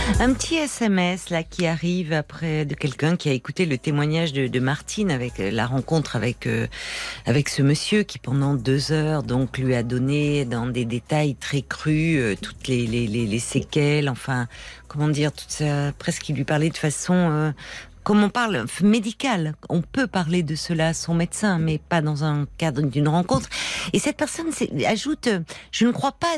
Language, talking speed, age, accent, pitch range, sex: French, 195 wpm, 50-69, French, 150-215 Hz, female